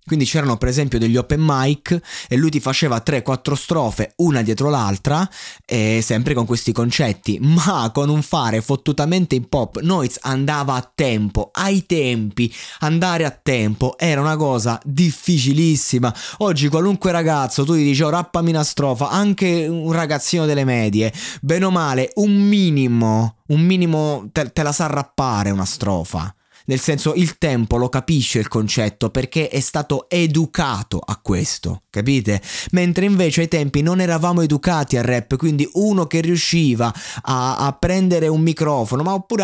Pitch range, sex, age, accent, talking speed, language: 125-165 Hz, male, 20-39, native, 160 wpm, Italian